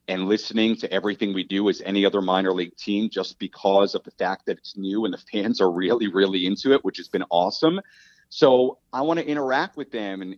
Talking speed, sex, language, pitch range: 230 wpm, male, English, 100-140 Hz